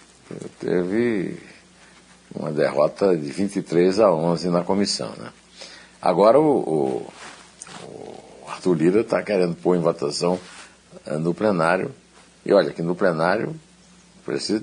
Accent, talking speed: Brazilian, 120 wpm